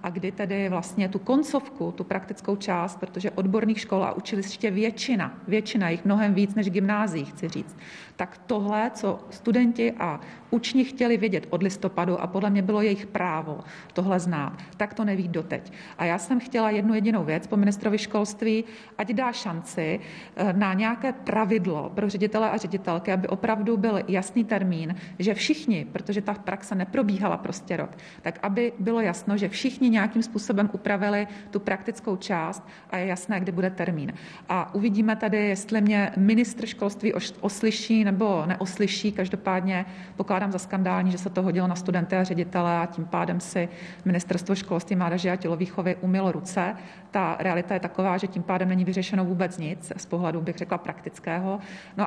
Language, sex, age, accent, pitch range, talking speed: Czech, female, 40-59, native, 180-210 Hz, 170 wpm